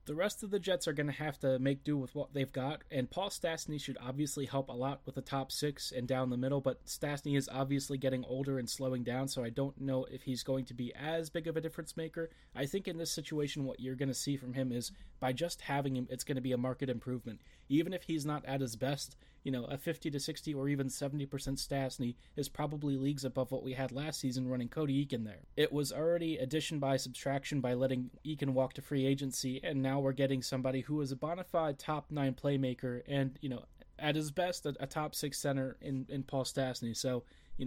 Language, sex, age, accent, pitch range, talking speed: English, male, 20-39, American, 130-150 Hz, 240 wpm